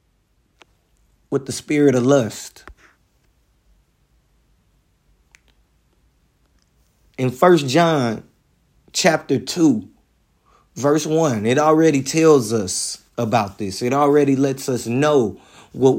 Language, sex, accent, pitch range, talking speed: English, male, American, 105-150 Hz, 90 wpm